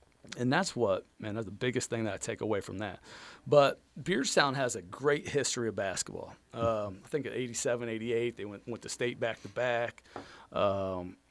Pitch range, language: 100-130 Hz, English